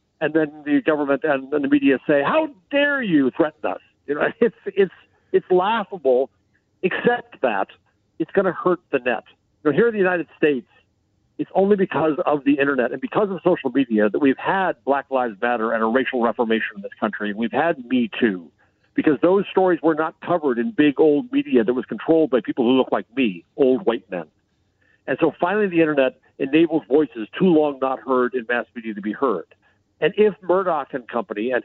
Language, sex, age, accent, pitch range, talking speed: English, male, 50-69, American, 125-175 Hz, 205 wpm